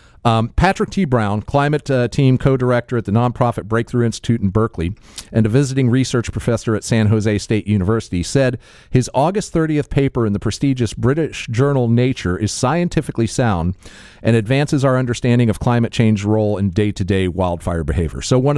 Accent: American